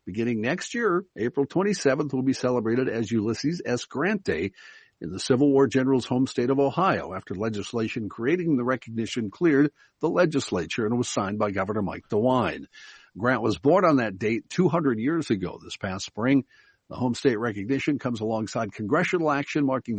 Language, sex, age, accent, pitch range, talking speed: English, male, 60-79, American, 105-135 Hz, 175 wpm